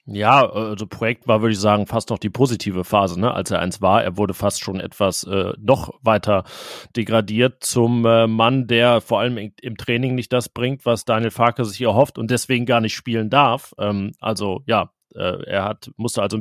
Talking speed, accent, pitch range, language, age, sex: 205 wpm, German, 110-125 Hz, German, 30-49, male